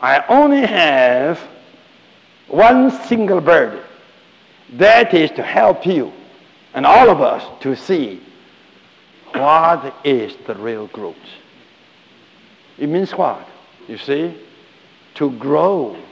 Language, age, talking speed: English, 60-79, 110 wpm